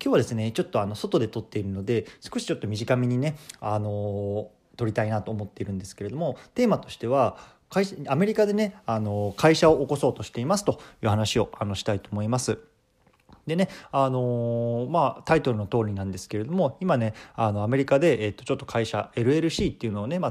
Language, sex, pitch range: Japanese, male, 105-145 Hz